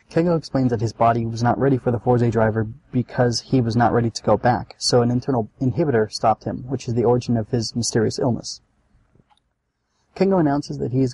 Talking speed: 210 wpm